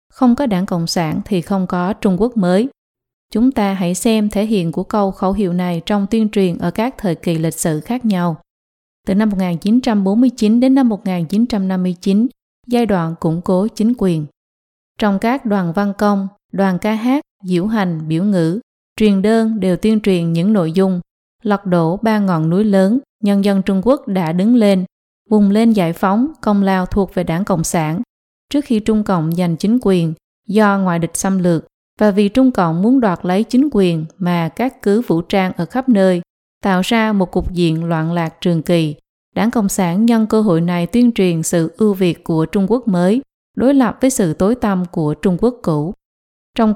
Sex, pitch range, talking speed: female, 180-220 Hz, 200 wpm